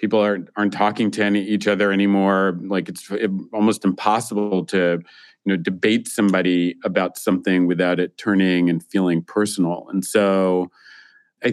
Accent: American